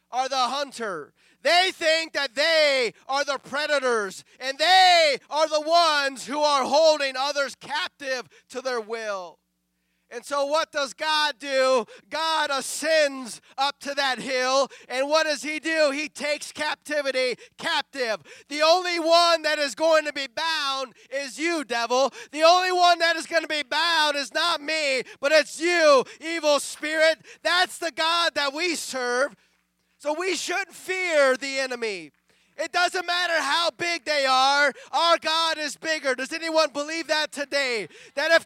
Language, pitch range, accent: English, 265-320 Hz, American